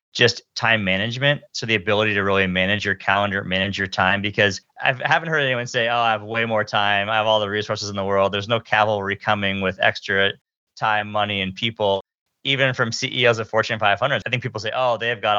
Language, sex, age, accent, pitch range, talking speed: English, male, 30-49, American, 95-115 Hz, 225 wpm